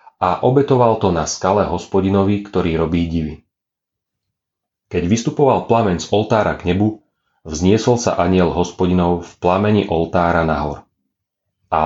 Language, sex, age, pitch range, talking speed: Slovak, male, 30-49, 85-110 Hz, 125 wpm